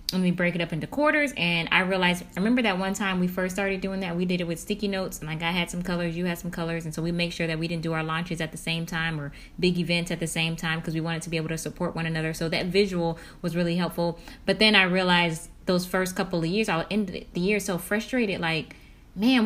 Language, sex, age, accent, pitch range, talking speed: English, female, 10-29, American, 165-190 Hz, 280 wpm